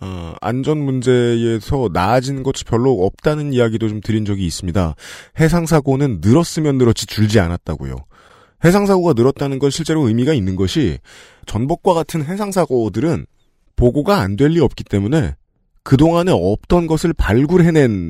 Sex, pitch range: male, 95-140 Hz